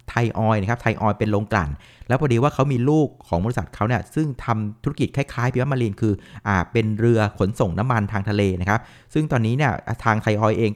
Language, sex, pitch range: Thai, male, 105-130 Hz